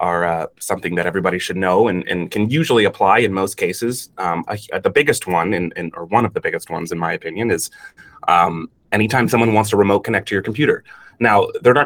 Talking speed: 230 wpm